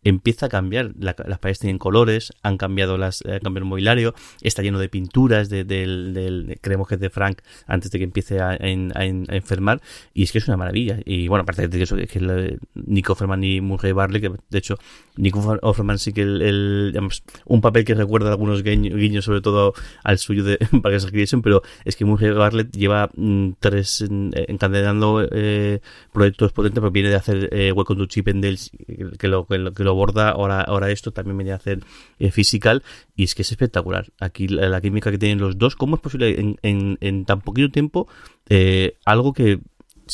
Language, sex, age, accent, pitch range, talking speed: Spanish, male, 30-49, Spanish, 95-110 Hz, 210 wpm